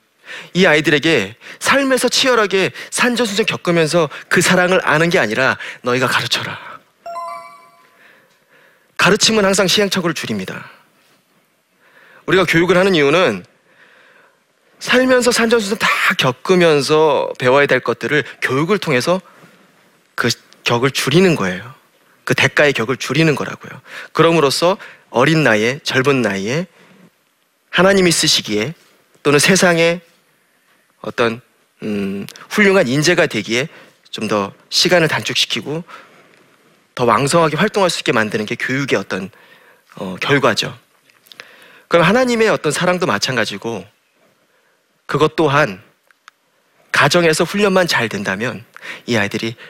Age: 30-49